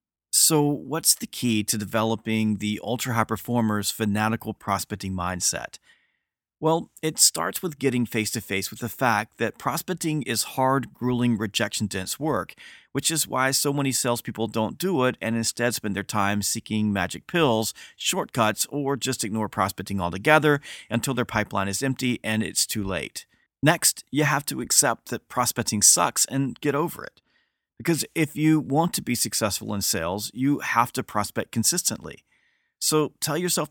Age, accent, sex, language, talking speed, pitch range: 40-59, American, male, English, 160 wpm, 110-145 Hz